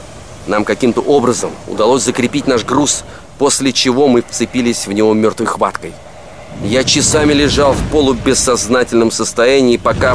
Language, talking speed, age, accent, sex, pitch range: Russian, 130 wpm, 30-49, native, male, 110-145 Hz